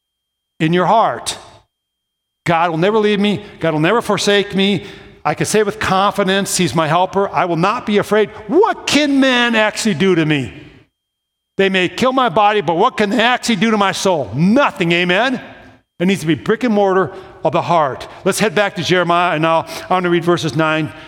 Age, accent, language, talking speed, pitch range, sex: 50-69, American, English, 200 wpm, 140-195 Hz, male